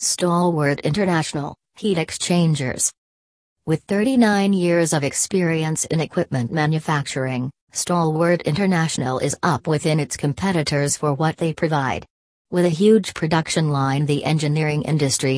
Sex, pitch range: female, 145-175 Hz